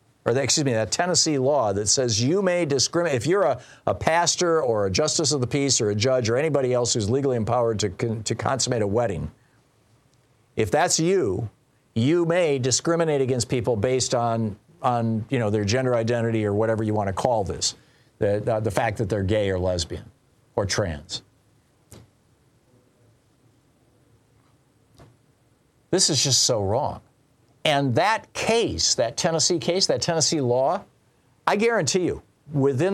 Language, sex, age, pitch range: English, male, 50-69, 115-145 Hz